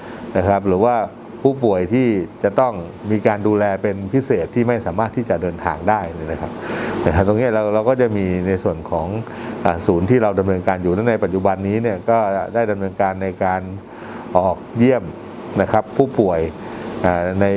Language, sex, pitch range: Thai, male, 95-115 Hz